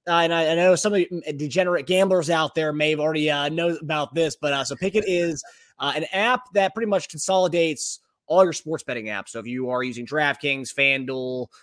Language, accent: English, American